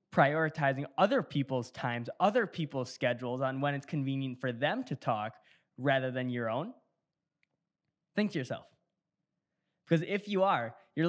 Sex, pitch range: male, 130-175 Hz